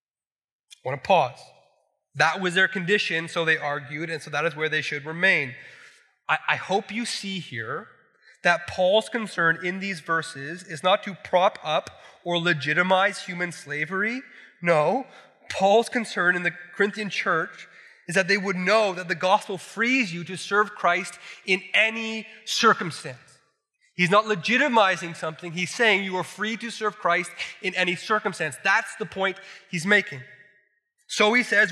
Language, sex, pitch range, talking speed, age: English, male, 185-250 Hz, 160 wpm, 30-49